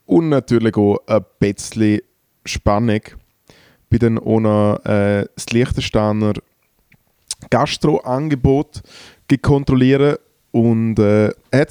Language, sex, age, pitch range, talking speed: German, male, 20-39, 105-130 Hz, 85 wpm